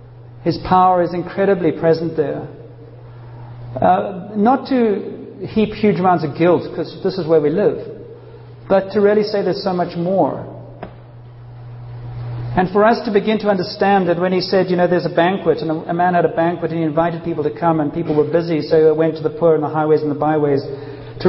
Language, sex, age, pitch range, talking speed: English, male, 50-69, 120-180 Hz, 210 wpm